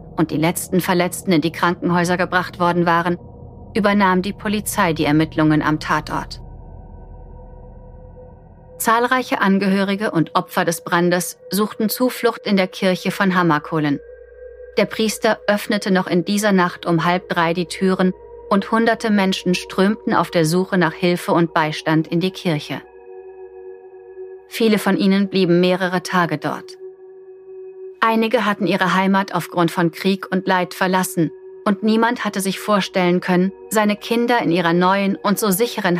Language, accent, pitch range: German, German, 170-225 Hz